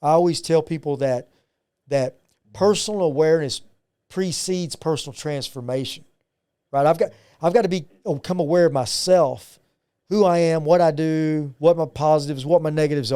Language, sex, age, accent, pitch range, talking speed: English, male, 40-59, American, 135-175 Hz, 155 wpm